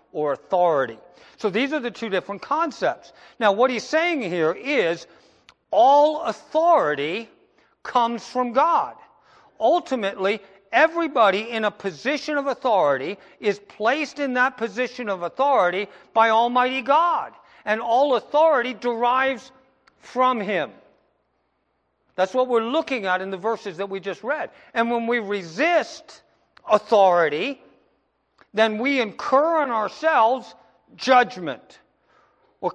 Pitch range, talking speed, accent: 205-285 Hz, 125 wpm, American